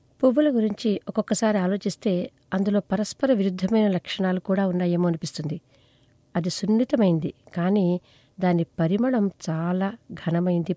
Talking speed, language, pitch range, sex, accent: 100 wpm, Telugu, 165-210 Hz, female, native